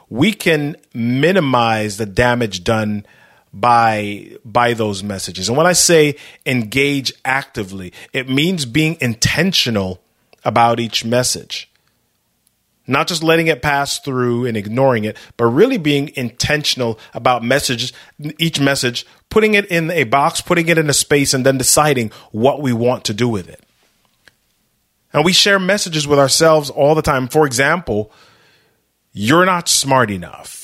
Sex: male